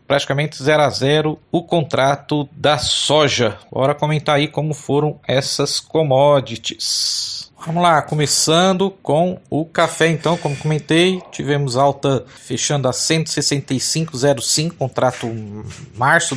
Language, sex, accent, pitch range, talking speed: Portuguese, male, Brazilian, 135-165 Hz, 115 wpm